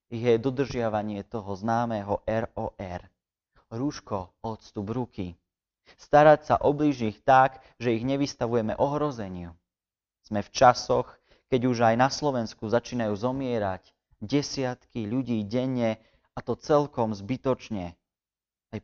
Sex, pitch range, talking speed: male, 105-135 Hz, 110 wpm